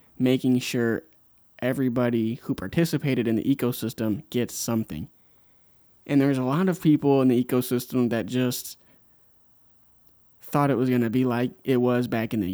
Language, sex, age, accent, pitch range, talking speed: Italian, male, 20-39, American, 120-150 Hz, 160 wpm